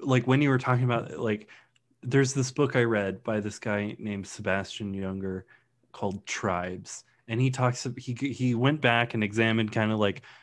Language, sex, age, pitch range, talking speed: English, male, 20-39, 105-125 Hz, 185 wpm